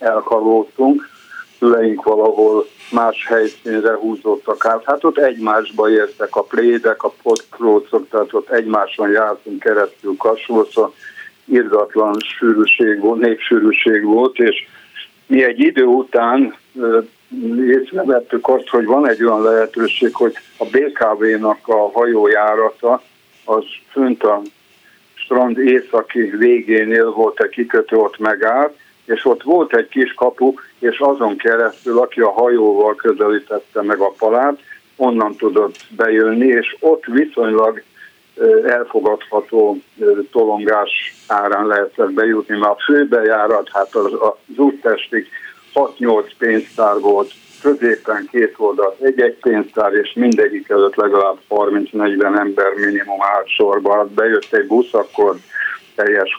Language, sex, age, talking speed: Hungarian, male, 60-79, 115 wpm